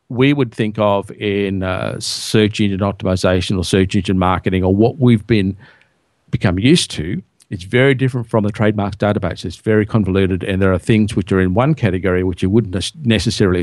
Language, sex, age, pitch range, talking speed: English, male, 50-69, 95-115 Hz, 190 wpm